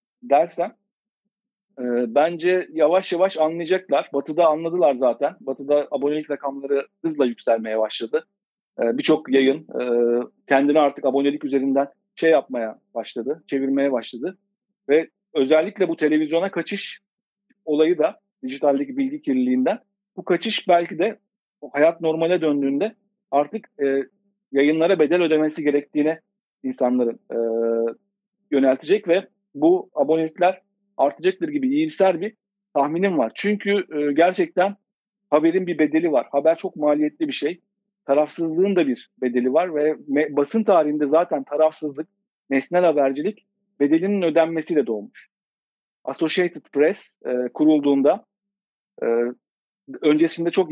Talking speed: 115 wpm